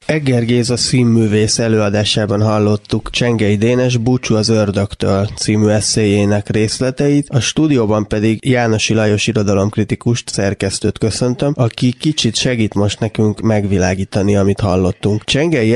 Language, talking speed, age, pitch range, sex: Hungarian, 115 wpm, 20-39, 105-125 Hz, male